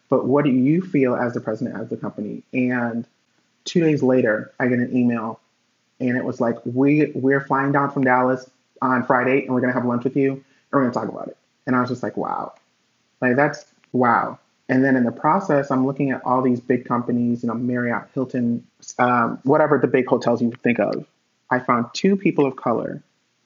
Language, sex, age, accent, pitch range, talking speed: English, male, 30-49, American, 120-135 Hz, 220 wpm